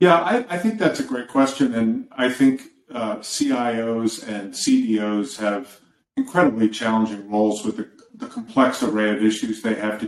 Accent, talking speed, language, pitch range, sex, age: American, 175 wpm, English, 105-175 Hz, male, 50-69